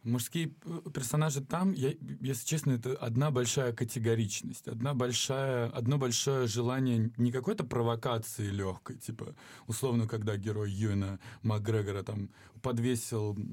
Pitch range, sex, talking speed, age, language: 115-150 Hz, male, 120 wpm, 20-39, Russian